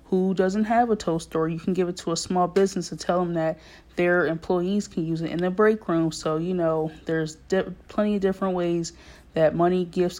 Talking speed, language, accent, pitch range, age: 230 wpm, English, American, 160-185 Hz, 20-39